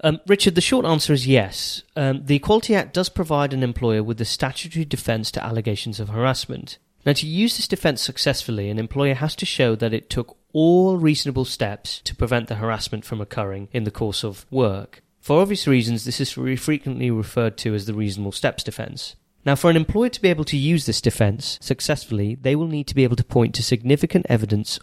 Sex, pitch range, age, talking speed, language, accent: male, 110-150 Hz, 30-49, 215 wpm, English, British